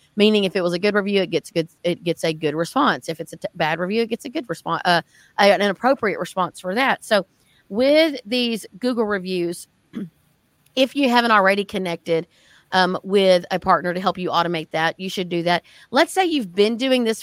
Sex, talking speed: female, 215 wpm